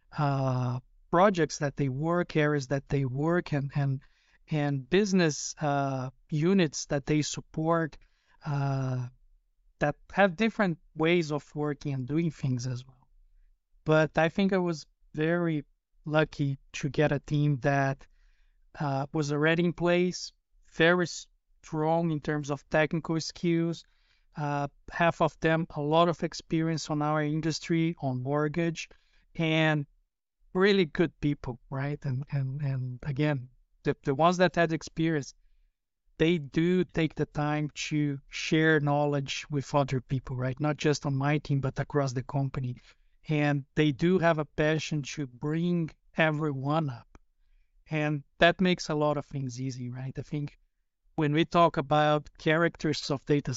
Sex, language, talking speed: male, English, 145 wpm